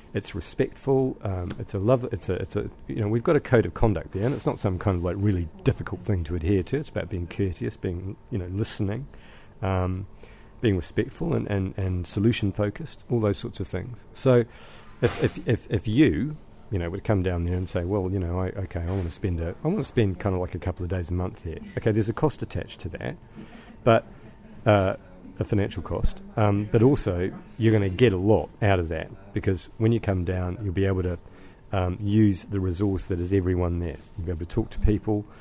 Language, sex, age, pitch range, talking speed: English, male, 40-59, 90-110 Hz, 235 wpm